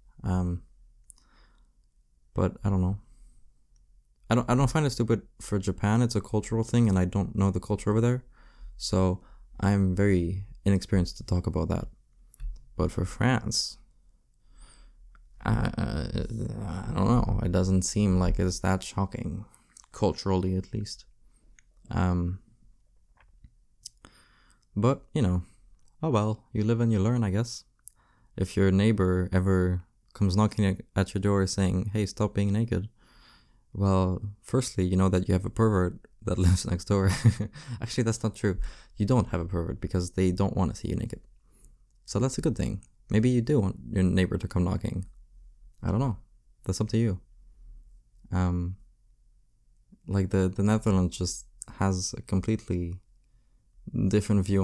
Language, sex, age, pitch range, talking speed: English, male, 20-39, 95-110 Hz, 155 wpm